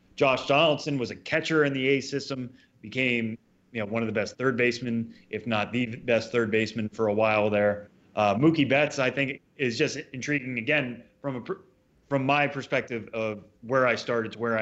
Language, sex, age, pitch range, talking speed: English, male, 20-39, 110-135 Hz, 195 wpm